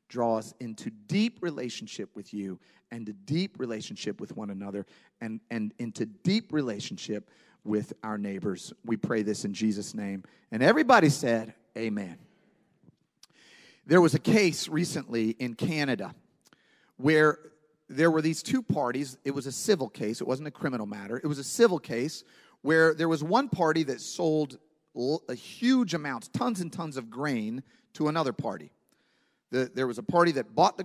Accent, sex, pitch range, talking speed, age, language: American, male, 130-190 Hz, 165 wpm, 40-59, English